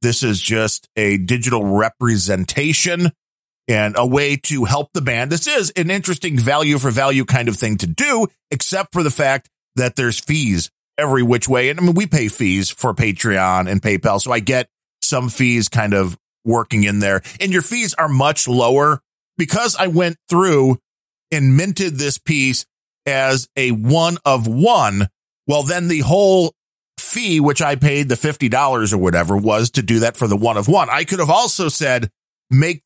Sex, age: male, 40-59